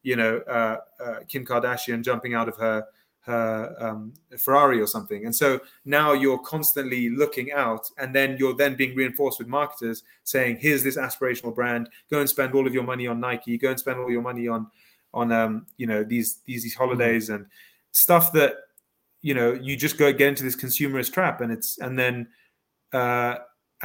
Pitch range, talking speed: 115-135 Hz, 195 wpm